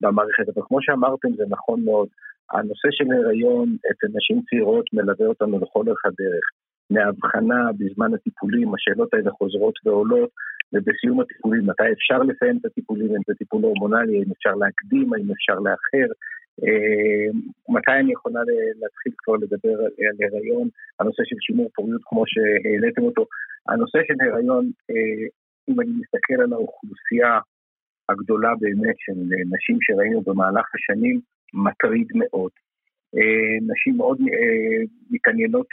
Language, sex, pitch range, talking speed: Hebrew, male, 210-255 Hz, 130 wpm